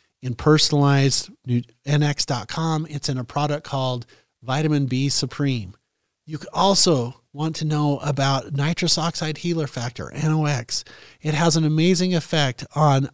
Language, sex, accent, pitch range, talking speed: English, male, American, 125-155 Hz, 125 wpm